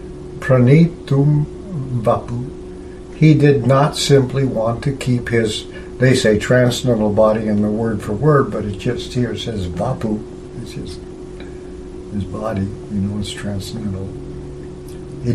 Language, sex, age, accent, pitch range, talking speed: English, male, 60-79, American, 95-130 Hz, 135 wpm